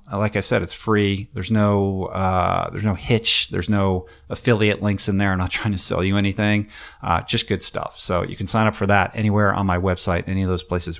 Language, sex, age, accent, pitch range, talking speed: English, male, 30-49, American, 90-110 Hz, 235 wpm